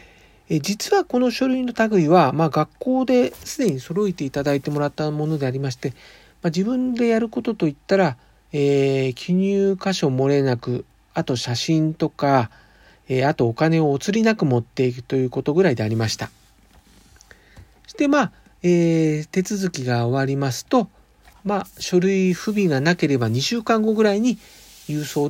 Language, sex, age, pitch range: Japanese, male, 40-59, 135-200 Hz